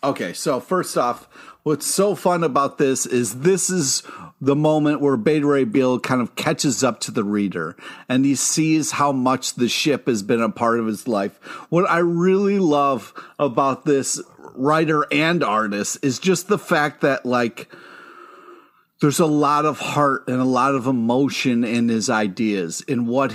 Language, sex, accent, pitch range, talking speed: English, male, American, 120-150 Hz, 175 wpm